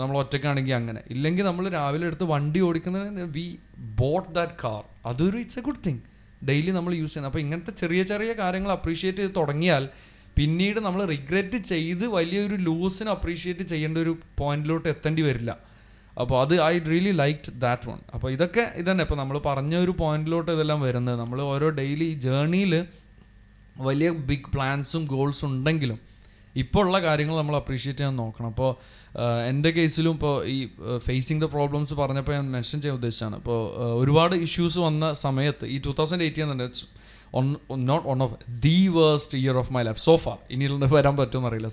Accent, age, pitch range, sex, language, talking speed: native, 20-39, 125-165 Hz, male, Malayalam, 160 wpm